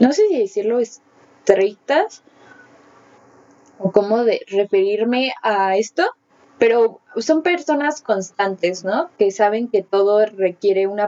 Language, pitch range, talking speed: Spanish, 200-250 Hz, 120 wpm